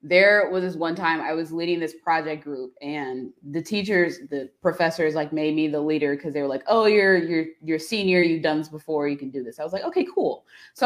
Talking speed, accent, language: 245 wpm, American, English